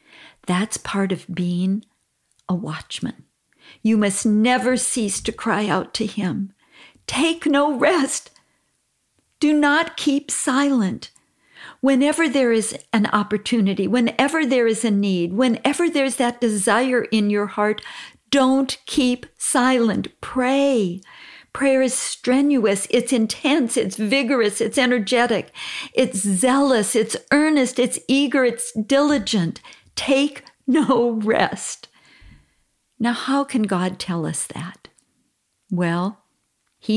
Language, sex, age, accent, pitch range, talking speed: English, female, 50-69, American, 195-270 Hz, 115 wpm